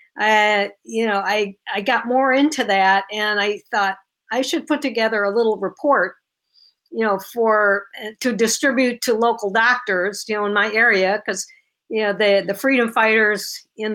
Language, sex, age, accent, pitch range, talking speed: English, female, 50-69, American, 205-255 Hz, 175 wpm